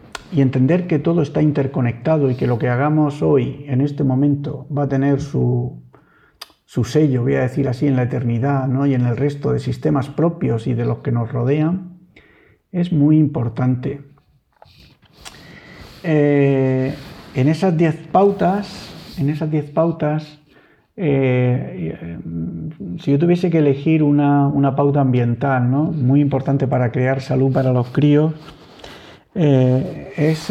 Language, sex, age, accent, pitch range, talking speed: Spanish, male, 50-69, Spanish, 130-150 Hz, 140 wpm